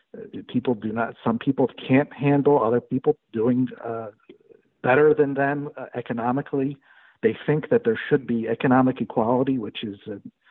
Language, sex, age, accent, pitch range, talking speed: English, male, 60-79, American, 120-155 Hz, 155 wpm